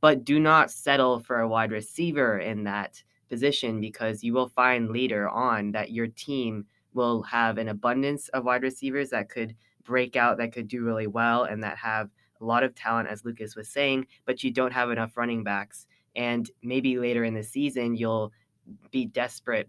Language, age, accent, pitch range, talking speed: English, 20-39, American, 115-135 Hz, 190 wpm